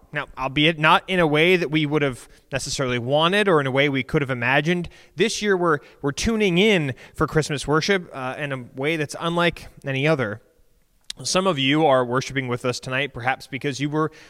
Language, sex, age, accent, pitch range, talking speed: English, male, 20-39, American, 140-175 Hz, 205 wpm